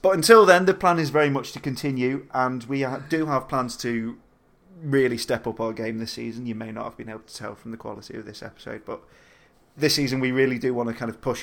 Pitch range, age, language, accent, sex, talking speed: 115-135 Hz, 30-49, English, British, male, 250 wpm